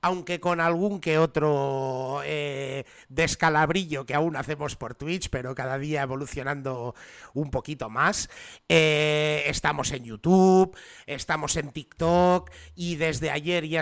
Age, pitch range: 30-49, 135-160 Hz